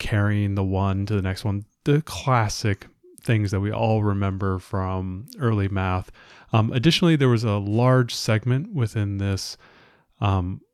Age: 30-49